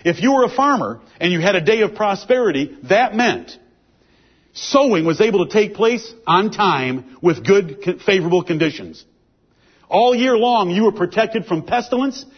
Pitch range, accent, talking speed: 185-250 Hz, American, 165 wpm